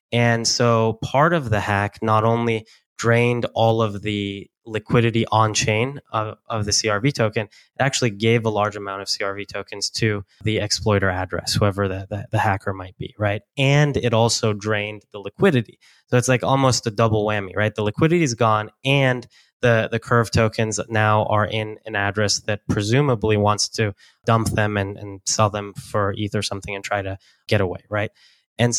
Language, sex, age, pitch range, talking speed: English, male, 10-29, 105-120 Hz, 185 wpm